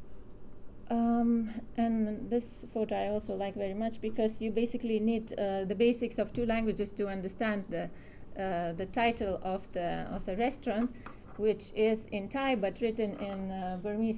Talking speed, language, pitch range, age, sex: 165 wpm, English, 190-230 Hz, 30-49, female